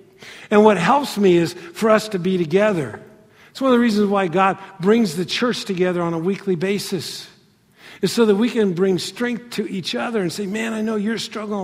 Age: 50-69